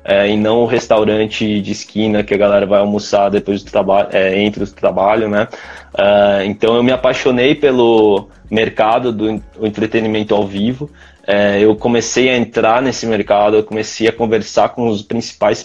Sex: male